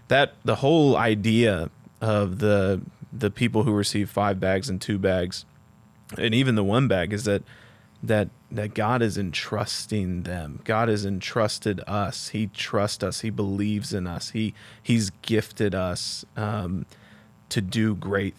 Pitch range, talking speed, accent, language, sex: 100-115 Hz, 155 wpm, American, English, male